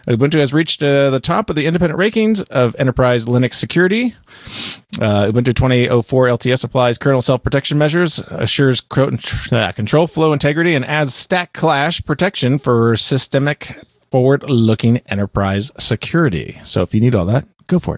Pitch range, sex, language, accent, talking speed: 115-145 Hz, male, English, American, 145 wpm